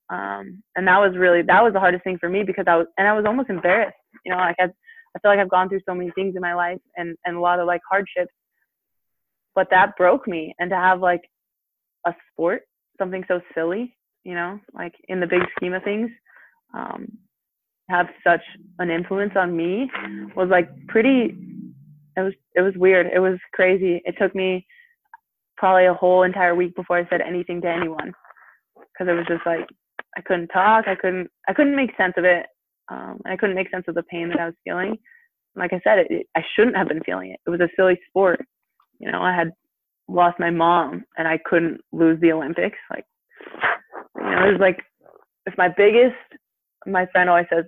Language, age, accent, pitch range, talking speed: English, 20-39, American, 170-195 Hz, 210 wpm